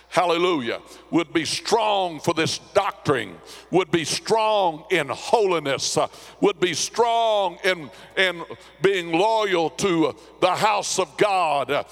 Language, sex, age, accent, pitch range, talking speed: English, male, 60-79, American, 190-260 Hz, 120 wpm